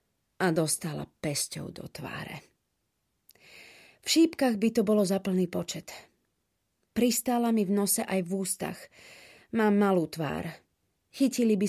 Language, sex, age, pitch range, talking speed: Slovak, female, 30-49, 175-215 Hz, 125 wpm